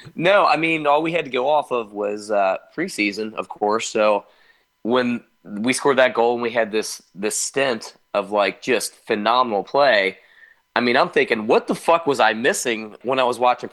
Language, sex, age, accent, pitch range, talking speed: English, male, 30-49, American, 110-130 Hz, 200 wpm